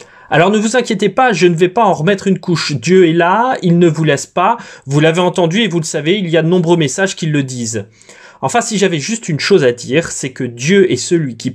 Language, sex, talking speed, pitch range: French, male, 265 wpm, 130-195 Hz